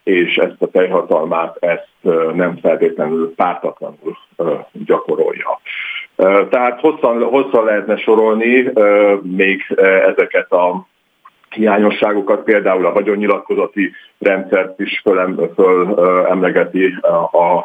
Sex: male